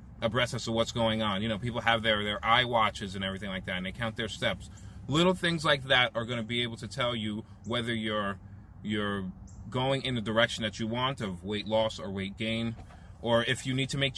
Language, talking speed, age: English, 245 wpm, 30-49